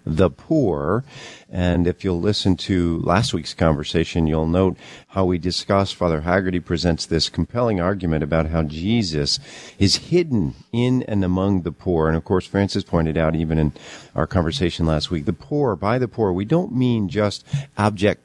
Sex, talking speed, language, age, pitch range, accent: male, 175 wpm, English, 50-69, 80-105 Hz, American